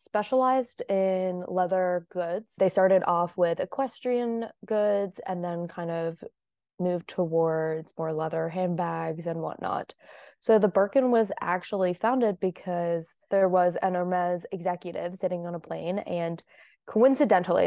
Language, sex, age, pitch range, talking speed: English, female, 20-39, 170-200 Hz, 130 wpm